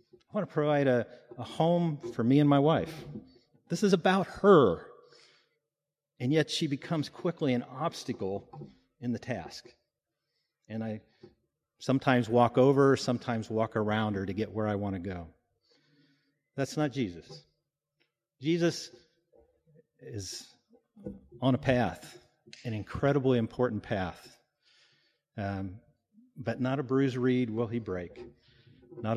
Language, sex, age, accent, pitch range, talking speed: English, male, 40-59, American, 110-145 Hz, 130 wpm